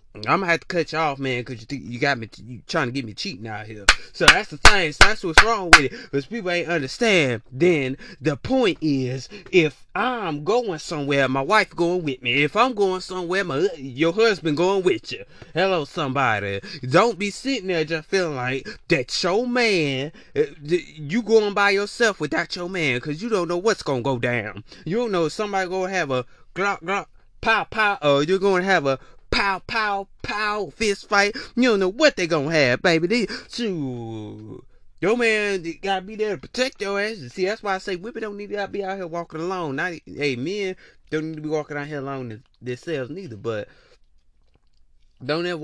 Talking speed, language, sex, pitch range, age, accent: 210 wpm, English, male, 130-200 Hz, 20-39, American